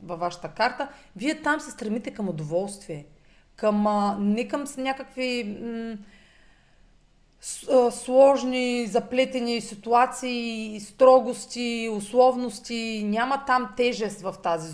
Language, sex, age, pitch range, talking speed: Bulgarian, female, 30-49, 205-260 Hz, 90 wpm